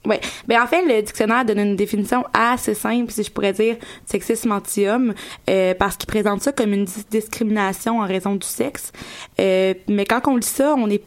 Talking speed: 205 wpm